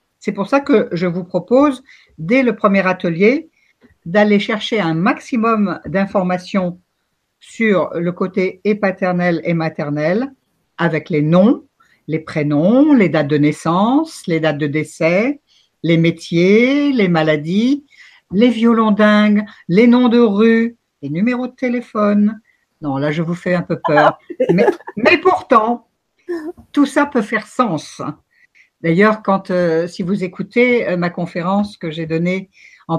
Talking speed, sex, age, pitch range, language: 145 wpm, female, 60-79, 170-230 Hz, French